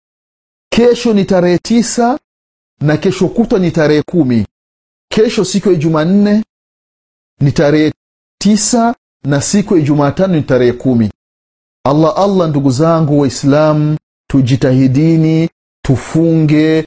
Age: 40-59